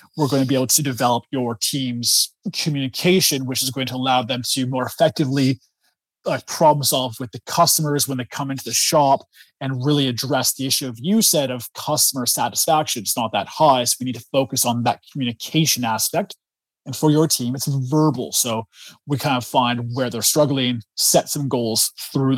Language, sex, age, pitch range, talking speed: English, male, 20-39, 120-145 Hz, 195 wpm